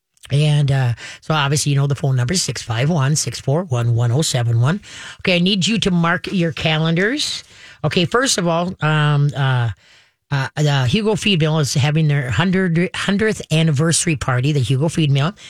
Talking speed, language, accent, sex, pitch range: 155 wpm, English, American, female, 140-170 Hz